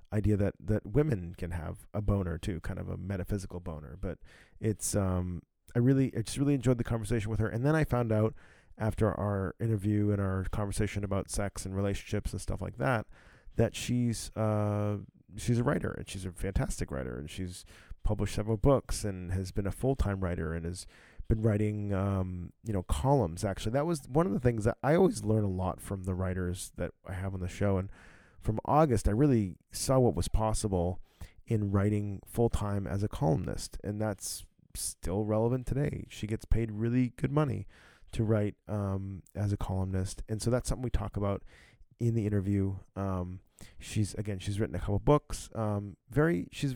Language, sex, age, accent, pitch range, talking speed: English, male, 30-49, American, 95-110 Hz, 195 wpm